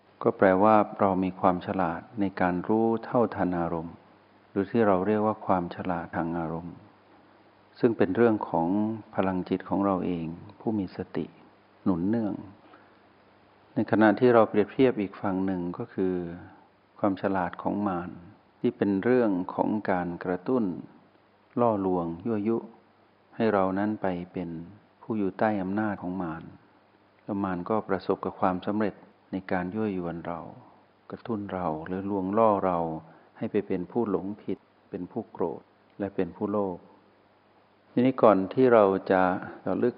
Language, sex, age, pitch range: Thai, male, 60-79, 90-105 Hz